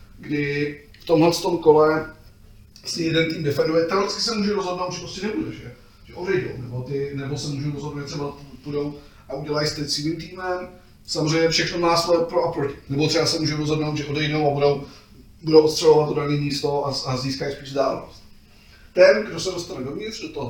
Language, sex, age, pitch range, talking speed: Slovak, male, 30-49, 140-160 Hz, 185 wpm